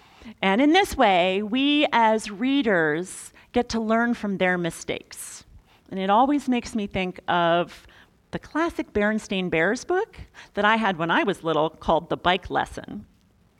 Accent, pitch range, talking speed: American, 180-260 Hz, 160 wpm